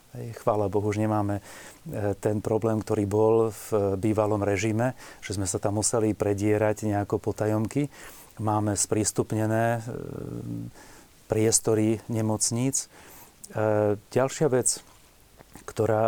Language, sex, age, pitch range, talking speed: Slovak, male, 30-49, 105-115 Hz, 95 wpm